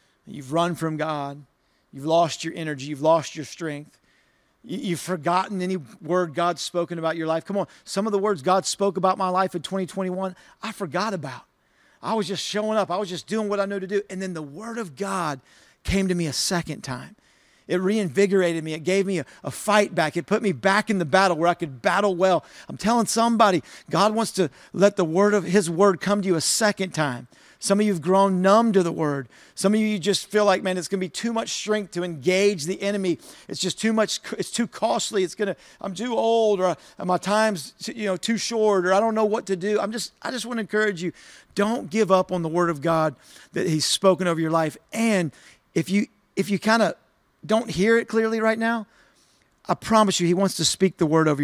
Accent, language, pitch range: American, English, 170-210 Hz